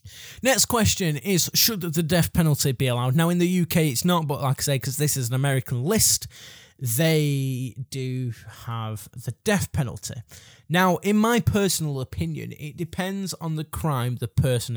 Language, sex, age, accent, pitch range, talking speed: English, male, 20-39, British, 115-150 Hz, 175 wpm